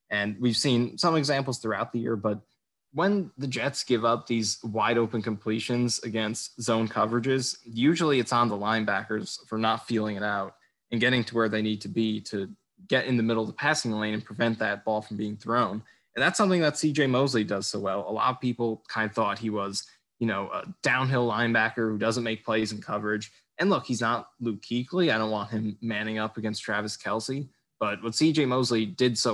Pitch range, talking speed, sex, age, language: 110-125 Hz, 215 wpm, male, 20-39, English